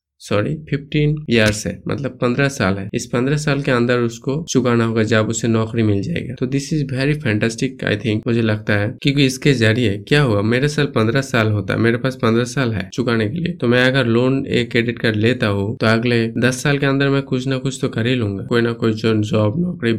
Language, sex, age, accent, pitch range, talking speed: Hindi, male, 20-39, native, 105-125 Hz, 230 wpm